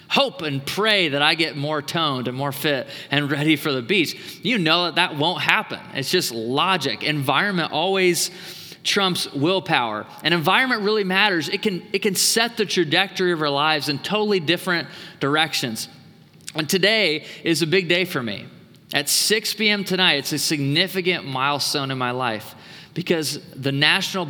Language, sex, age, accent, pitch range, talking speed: English, male, 20-39, American, 135-180 Hz, 170 wpm